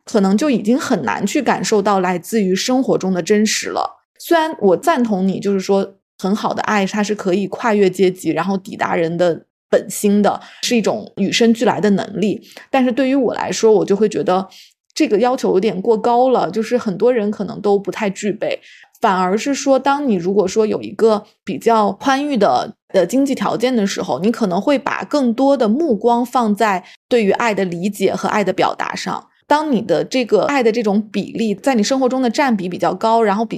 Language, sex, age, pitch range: Chinese, female, 20-39, 195-240 Hz